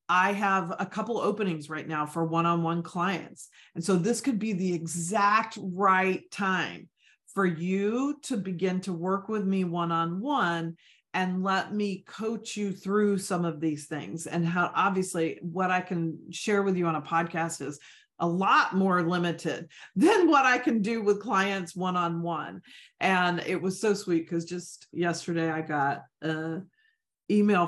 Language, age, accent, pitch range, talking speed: English, 40-59, American, 165-200 Hz, 165 wpm